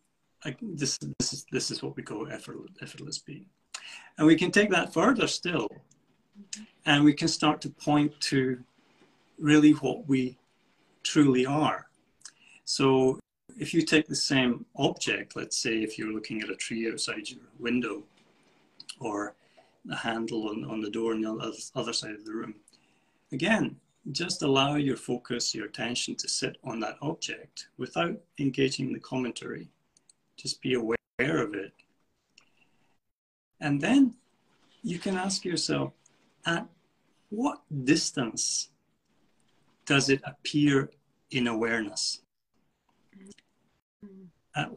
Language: English